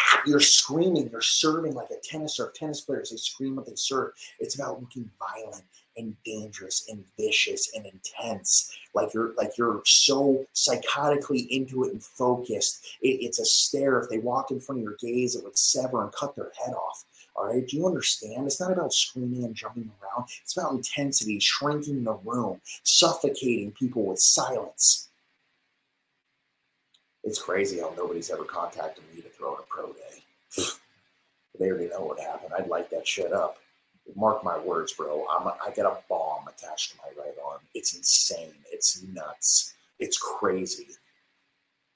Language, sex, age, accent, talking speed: English, male, 30-49, American, 175 wpm